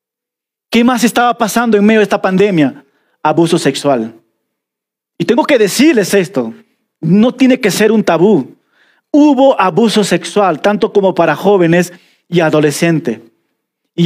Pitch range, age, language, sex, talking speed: 165-220 Hz, 40-59, Spanish, male, 135 wpm